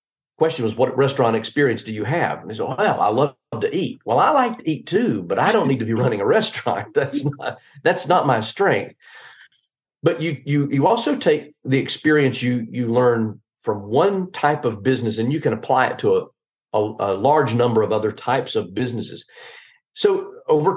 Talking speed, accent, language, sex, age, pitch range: 210 wpm, American, English, male, 40-59, 115-155 Hz